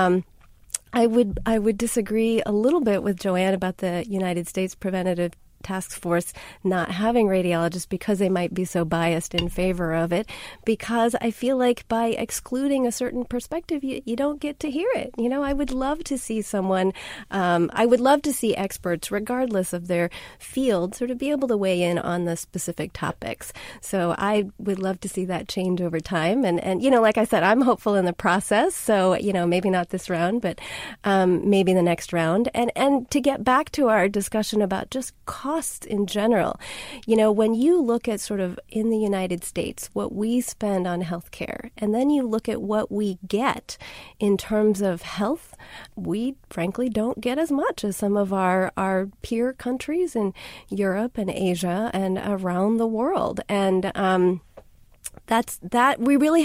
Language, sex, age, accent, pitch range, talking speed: English, female, 30-49, American, 185-240 Hz, 190 wpm